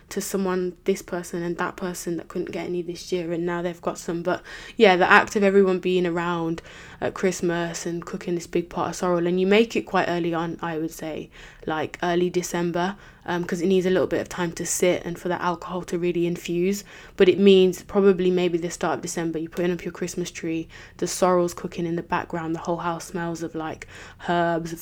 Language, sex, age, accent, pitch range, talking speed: English, female, 10-29, British, 165-180 Hz, 230 wpm